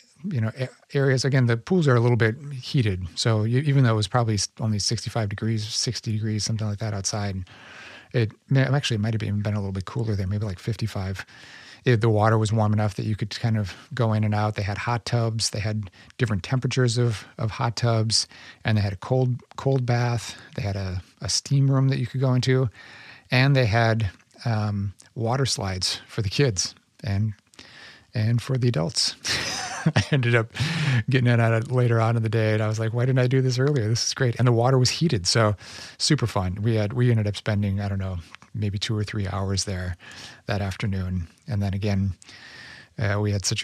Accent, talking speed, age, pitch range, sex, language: American, 215 wpm, 40-59, 105-125 Hz, male, English